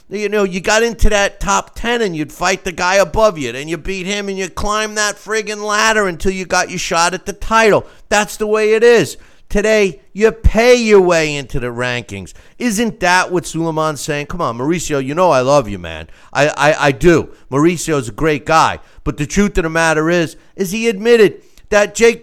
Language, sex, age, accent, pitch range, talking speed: English, male, 50-69, American, 165-215 Hz, 215 wpm